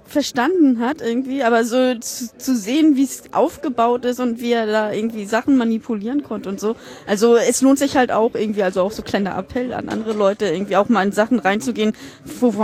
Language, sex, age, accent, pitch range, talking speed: German, female, 20-39, German, 195-250 Hz, 210 wpm